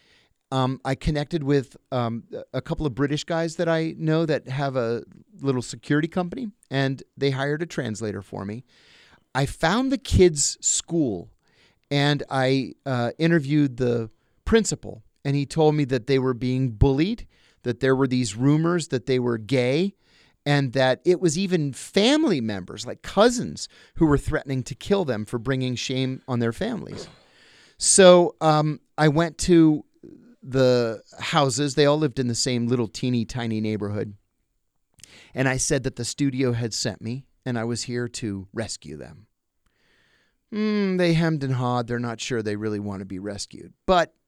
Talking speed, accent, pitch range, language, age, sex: 170 wpm, American, 120-155 Hz, English, 40-59, male